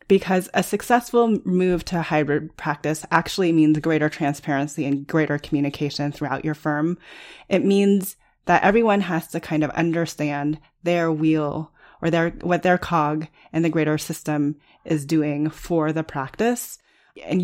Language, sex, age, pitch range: English, female, 30-49, 150-185 Hz